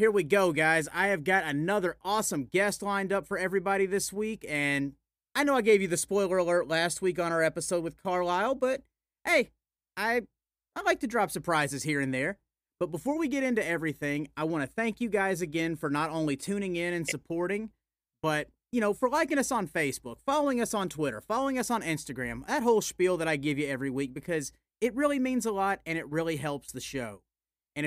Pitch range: 165-230 Hz